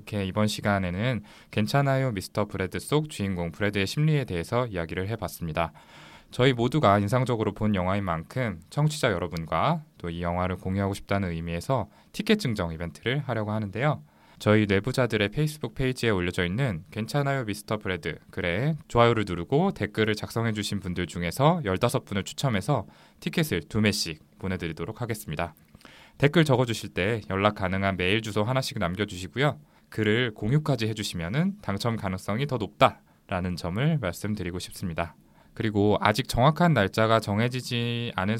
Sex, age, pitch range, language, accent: male, 20-39, 90-120 Hz, Korean, native